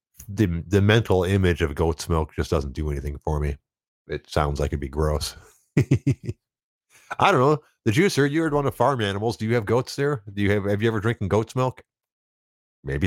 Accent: American